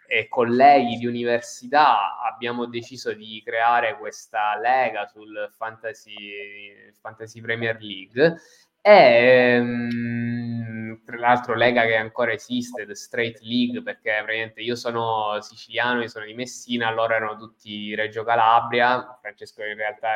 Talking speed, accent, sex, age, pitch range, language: 130 wpm, native, male, 20-39, 110-135 Hz, Italian